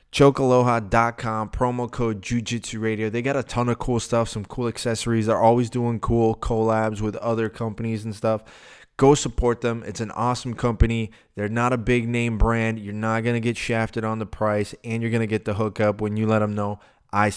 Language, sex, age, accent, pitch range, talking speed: English, male, 20-39, American, 105-120 Hz, 205 wpm